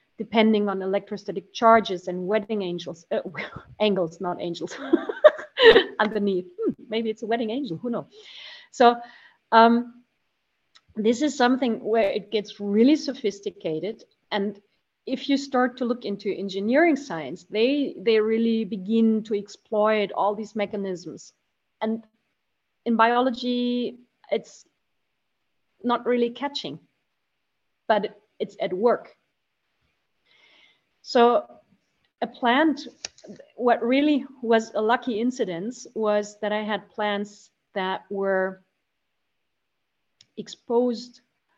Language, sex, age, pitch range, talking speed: English, female, 30-49, 200-245 Hz, 110 wpm